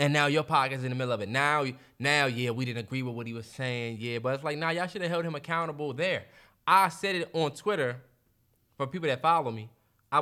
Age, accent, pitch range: 20-39, American, 120-160 Hz